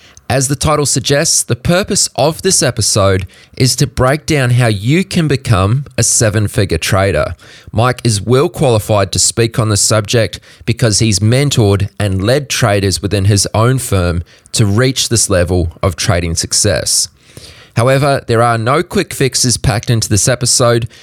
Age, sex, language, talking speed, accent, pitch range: 20-39, male, English, 165 wpm, Australian, 100-130 Hz